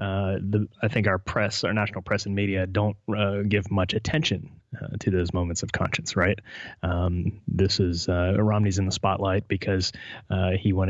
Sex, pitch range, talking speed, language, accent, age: male, 95-105 Hz, 195 wpm, English, American, 20-39